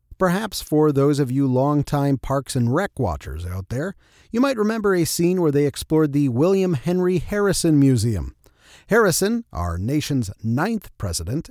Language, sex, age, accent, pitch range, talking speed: English, male, 40-59, American, 125-170 Hz, 155 wpm